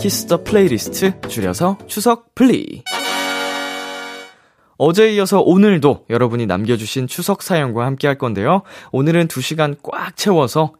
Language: Korean